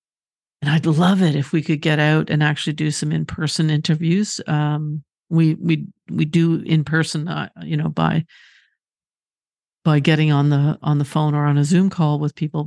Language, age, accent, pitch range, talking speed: English, 50-69, American, 150-165 Hz, 185 wpm